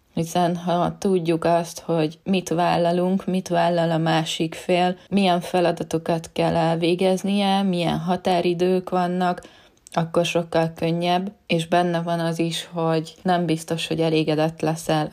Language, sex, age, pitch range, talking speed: Hungarian, female, 20-39, 160-175 Hz, 130 wpm